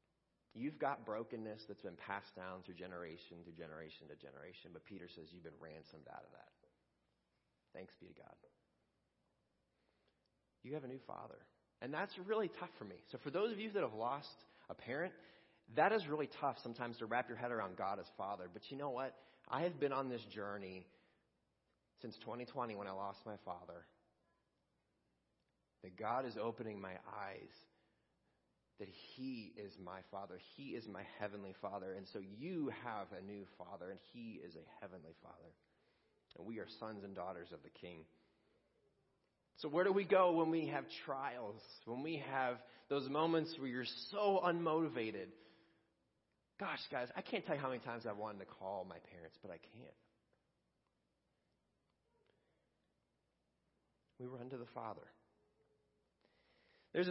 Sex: male